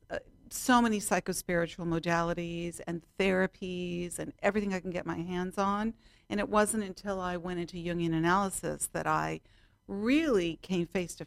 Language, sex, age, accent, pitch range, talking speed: English, female, 50-69, American, 165-195 Hz, 155 wpm